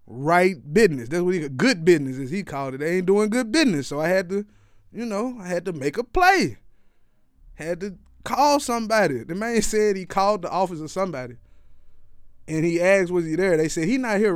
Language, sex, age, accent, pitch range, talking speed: English, male, 20-39, American, 130-185 Hz, 215 wpm